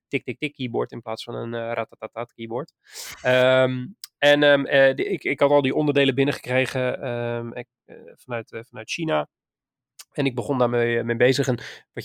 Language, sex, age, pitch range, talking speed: Dutch, male, 20-39, 125-145 Hz, 185 wpm